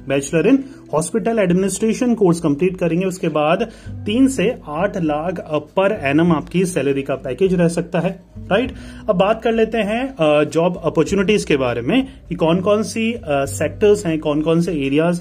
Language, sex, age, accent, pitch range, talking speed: Hindi, male, 30-49, native, 150-195 Hz, 170 wpm